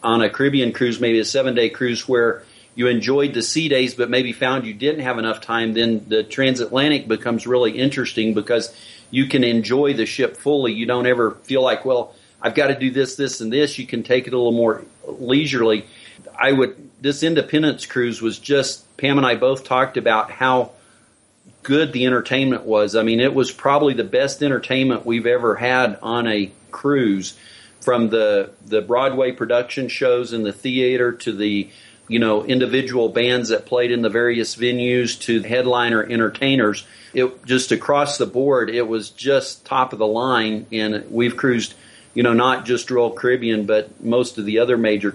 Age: 40-59